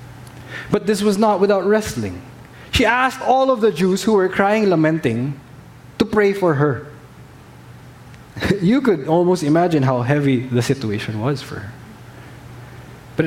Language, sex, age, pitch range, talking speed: English, male, 20-39, 125-185 Hz, 145 wpm